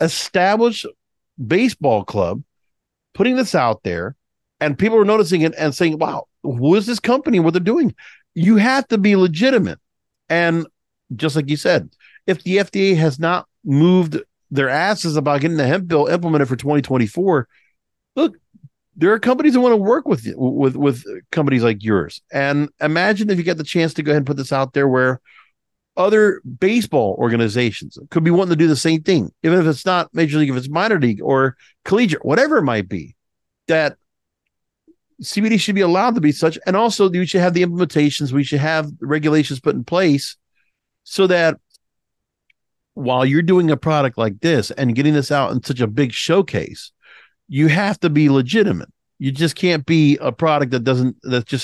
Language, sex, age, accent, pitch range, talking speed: English, male, 50-69, American, 140-185 Hz, 185 wpm